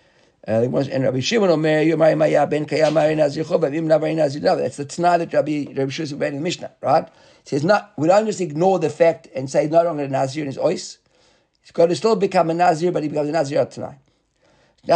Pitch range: 140-180 Hz